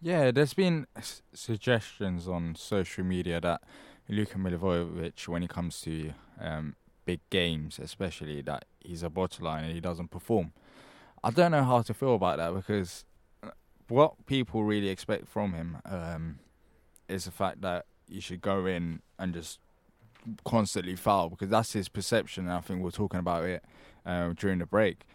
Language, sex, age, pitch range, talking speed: English, male, 10-29, 90-115 Hz, 170 wpm